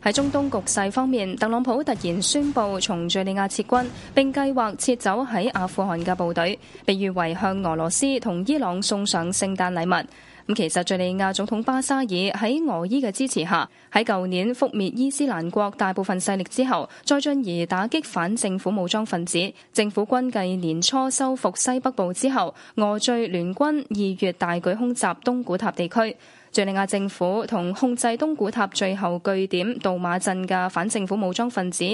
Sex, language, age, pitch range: female, Chinese, 10-29, 185-245 Hz